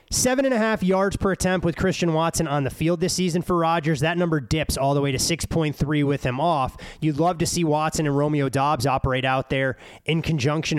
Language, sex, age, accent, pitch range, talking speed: English, male, 20-39, American, 135-175 Hz, 205 wpm